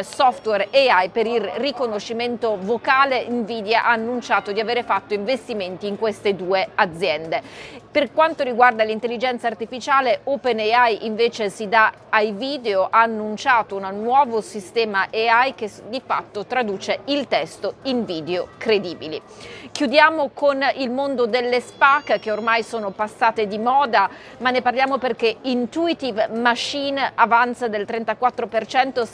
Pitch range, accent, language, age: 215-255 Hz, native, Italian, 30-49